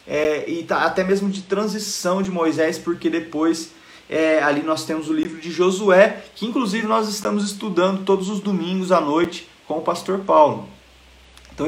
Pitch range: 150-195 Hz